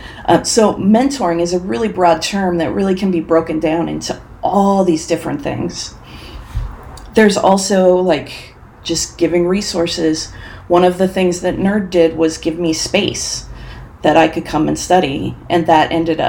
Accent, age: American, 40-59